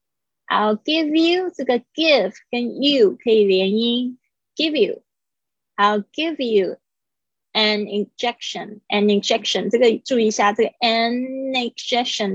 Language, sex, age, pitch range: Chinese, female, 20-39, 205-265 Hz